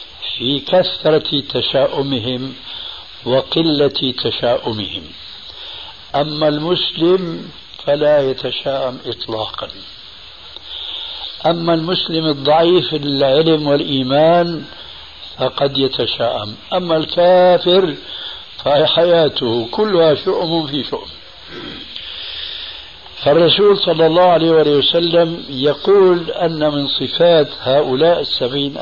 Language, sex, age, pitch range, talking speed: Arabic, male, 60-79, 130-170 Hz, 75 wpm